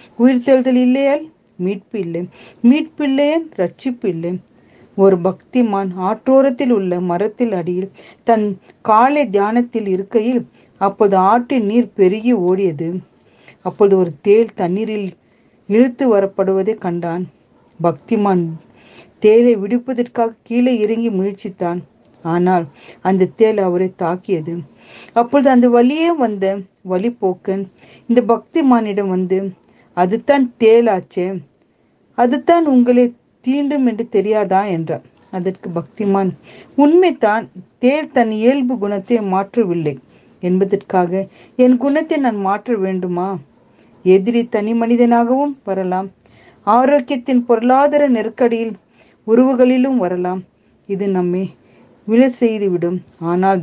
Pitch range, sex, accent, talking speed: 185-245 Hz, female, native, 95 wpm